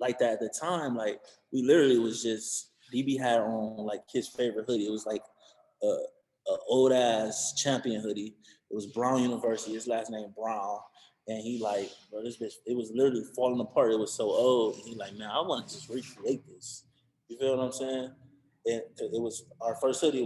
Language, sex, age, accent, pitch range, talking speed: English, male, 20-39, American, 115-155 Hz, 205 wpm